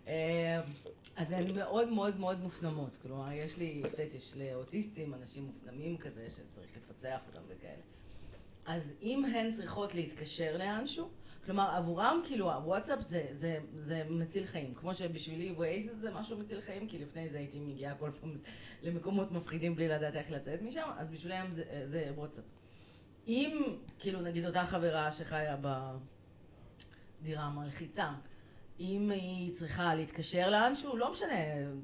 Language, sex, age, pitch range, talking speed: Hebrew, female, 30-49, 135-180 Hz, 140 wpm